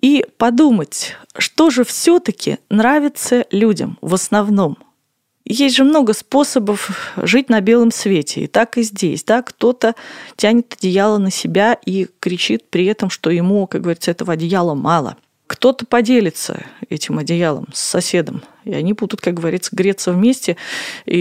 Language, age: Russian, 20-39